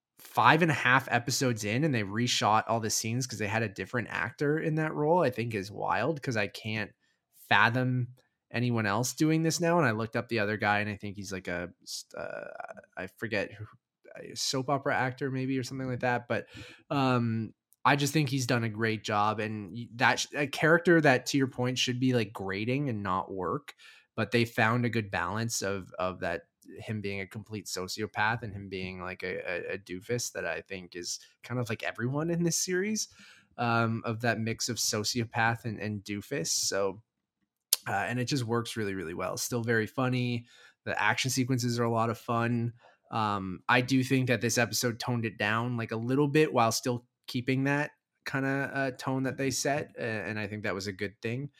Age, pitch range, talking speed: 20-39, 105-135 Hz, 210 wpm